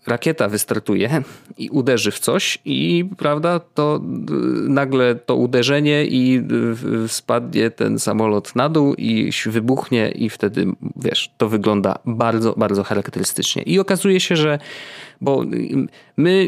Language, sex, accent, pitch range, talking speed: Polish, male, native, 110-150 Hz, 125 wpm